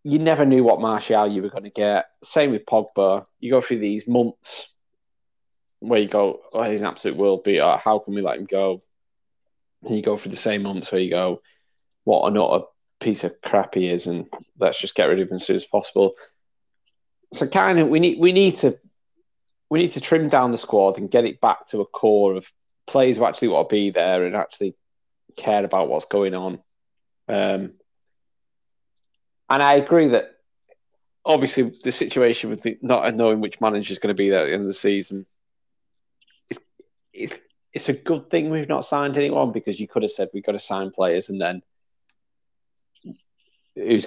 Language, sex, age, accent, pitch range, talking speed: English, male, 20-39, British, 95-145 Hz, 200 wpm